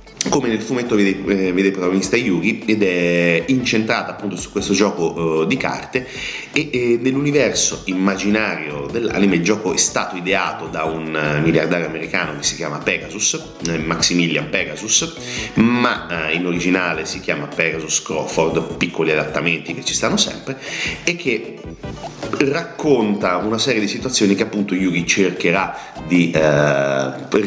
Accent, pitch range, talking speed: native, 85-110 Hz, 140 wpm